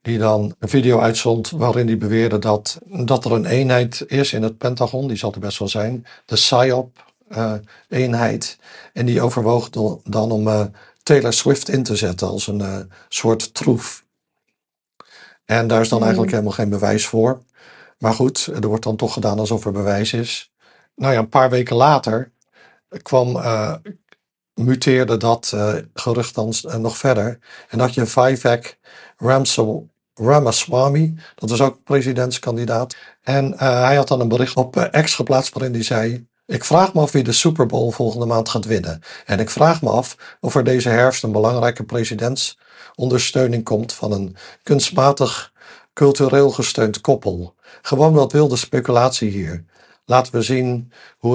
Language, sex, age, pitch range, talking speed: Dutch, male, 50-69, 110-130 Hz, 165 wpm